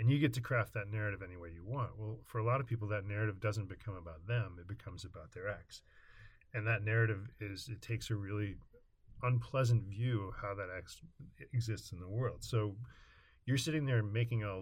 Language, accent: English, American